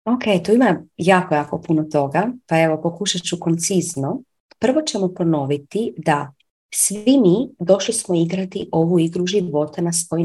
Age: 30-49